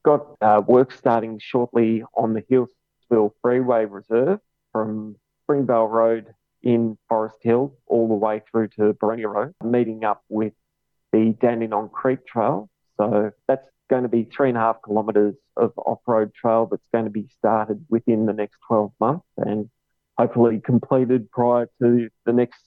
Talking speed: 160 wpm